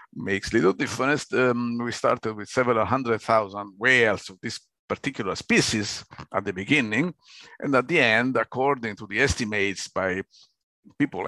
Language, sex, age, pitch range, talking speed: English, male, 50-69, 100-120 Hz, 150 wpm